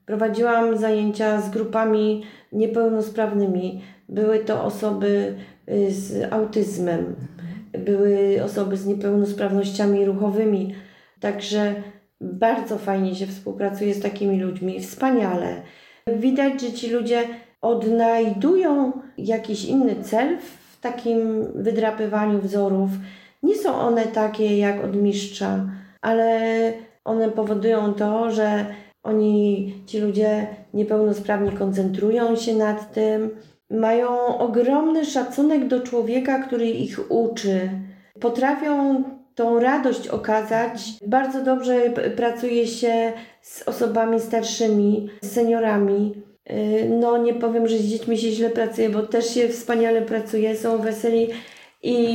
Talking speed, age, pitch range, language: 105 wpm, 40-59, 205-230 Hz, Polish